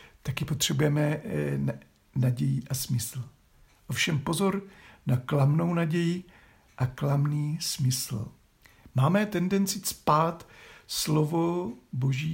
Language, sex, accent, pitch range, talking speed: Czech, male, native, 125-175 Hz, 90 wpm